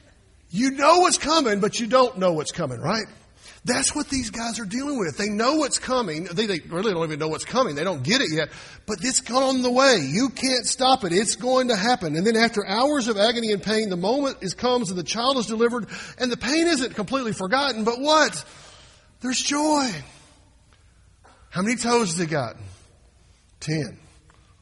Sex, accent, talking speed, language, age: male, American, 200 wpm, English, 50-69